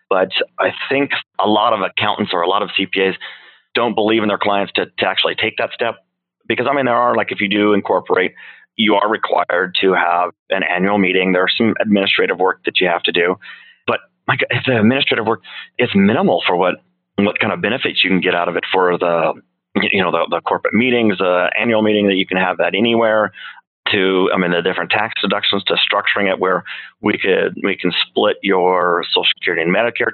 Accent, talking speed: American, 220 wpm